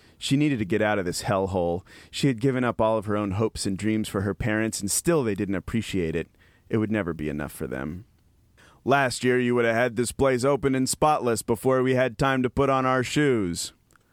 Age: 30-49